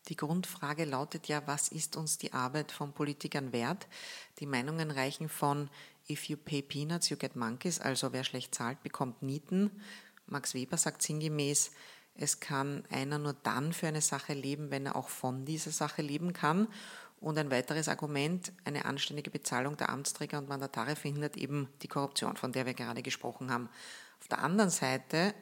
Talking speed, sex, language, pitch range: 175 wpm, female, German, 135-160 Hz